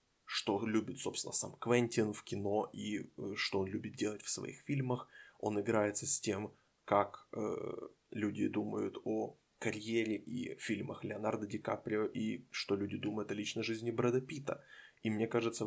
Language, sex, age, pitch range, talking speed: Ukrainian, male, 20-39, 105-120 Hz, 160 wpm